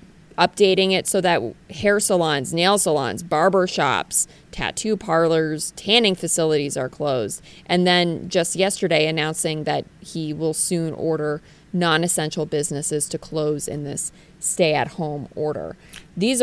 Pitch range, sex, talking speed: 160-190 Hz, female, 135 wpm